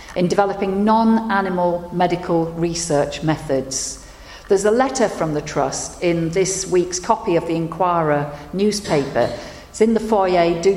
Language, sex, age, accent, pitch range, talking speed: English, female, 50-69, British, 150-195 Hz, 140 wpm